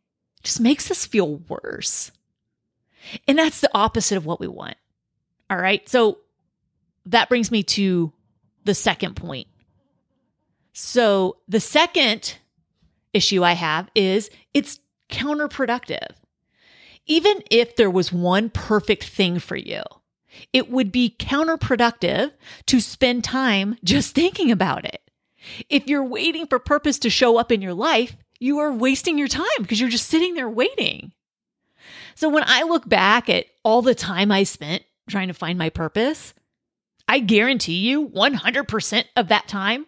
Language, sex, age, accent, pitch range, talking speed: English, female, 30-49, American, 205-285 Hz, 145 wpm